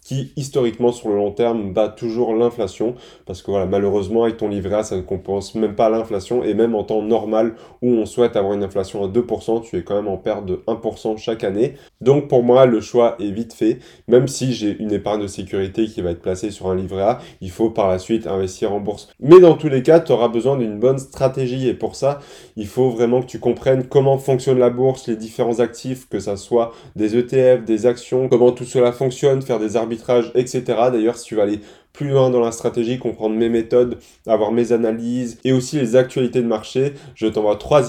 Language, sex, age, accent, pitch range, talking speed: French, male, 20-39, French, 110-125 Hz, 230 wpm